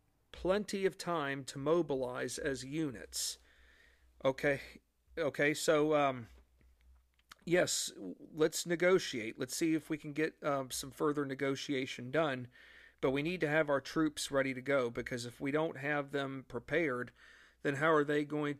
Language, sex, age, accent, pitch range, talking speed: English, male, 40-59, American, 130-155 Hz, 150 wpm